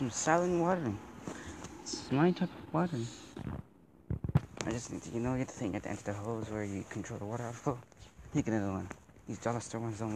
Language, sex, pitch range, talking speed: English, male, 105-120 Hz, 230 wpm